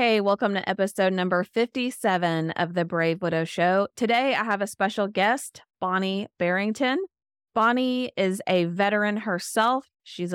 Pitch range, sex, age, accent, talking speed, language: 175-215 Hz, female, 20-39, American, 145 wpm, English